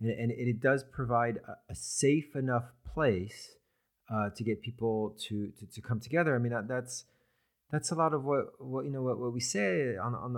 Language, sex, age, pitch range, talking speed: English, male, 30-49, 110-135 Hz, 205 wpm